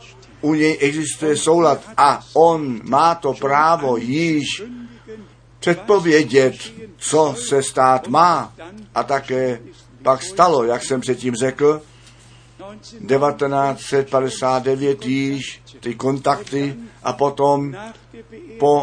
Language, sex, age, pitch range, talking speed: Czech, male, 60-79, 125-145 Hz, 95 wpm